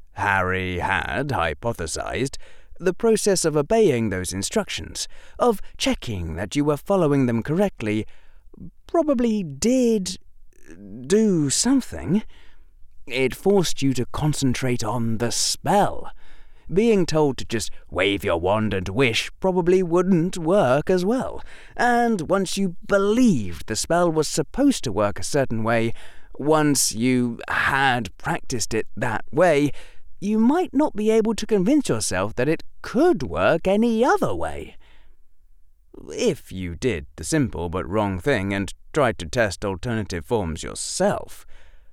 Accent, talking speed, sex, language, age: British, 135 wpm, male, English, 30-49